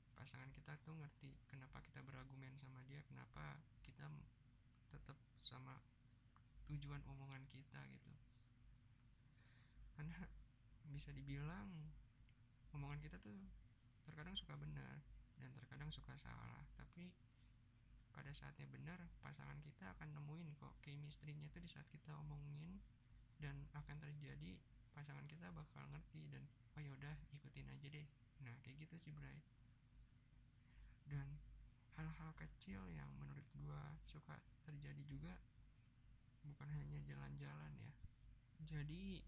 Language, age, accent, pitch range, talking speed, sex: Indonesian, 20-39, native, 120-145 Hz, 120 wpm, male